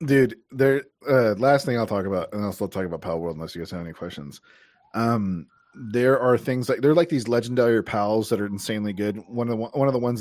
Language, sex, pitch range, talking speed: English, male, 100-125 Hz, 255 wpm